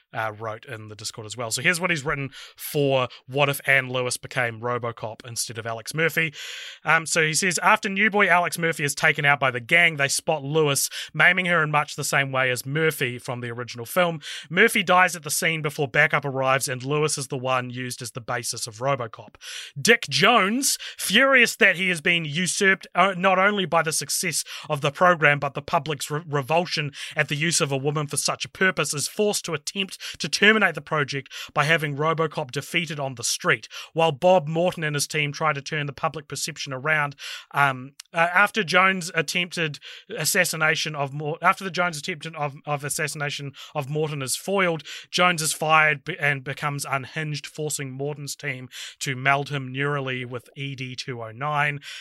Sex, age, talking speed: male, 30-49, 195 wpm